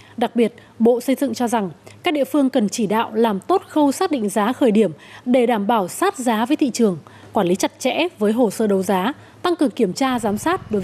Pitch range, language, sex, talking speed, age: 205-265 Hz, Vietnamese, female, 250 wpm, 20-39